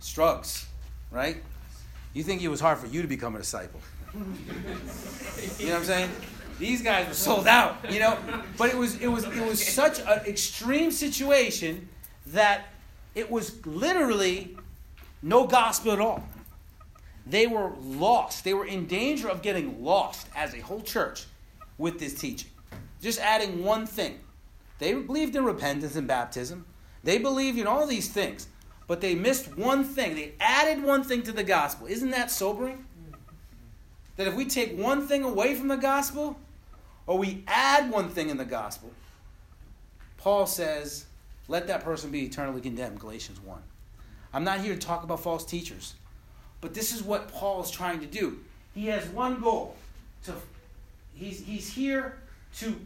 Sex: male